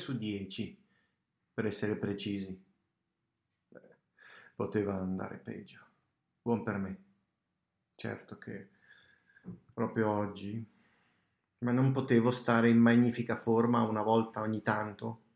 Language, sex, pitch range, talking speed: Italian, male, 100-120 Hz, 105 wpm